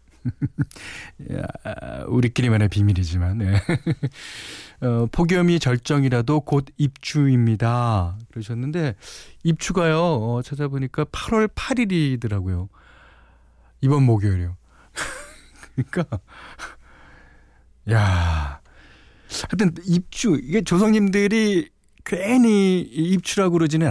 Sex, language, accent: male, Korean, native